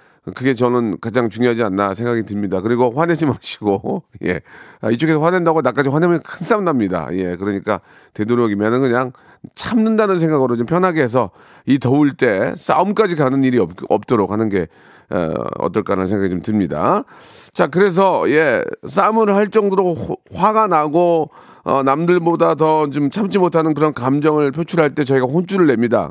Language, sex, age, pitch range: Korean, male, 40-59, 125-175 Hz